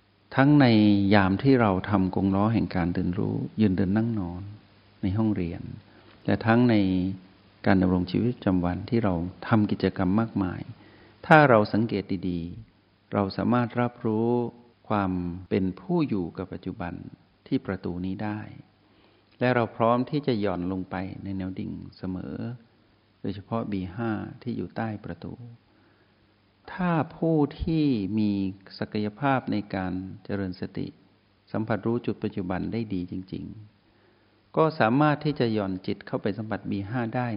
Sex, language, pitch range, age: male, Thai, 95-115 Hz, 60-79